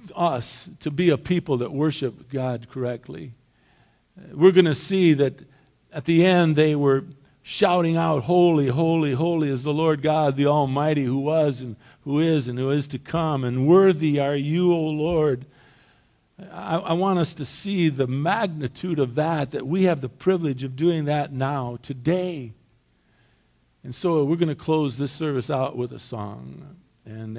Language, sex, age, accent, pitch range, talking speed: English, male, 50-69, American, 125-160 Hz, 175 wpm